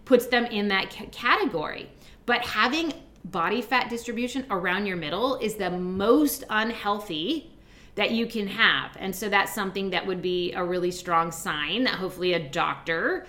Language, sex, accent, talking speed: English, female, American, 165 wpm